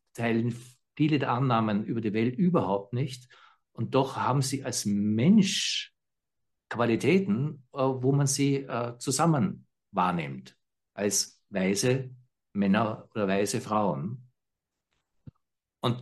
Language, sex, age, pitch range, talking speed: German, male, 60-79, 110-135 Hz, 105 wpm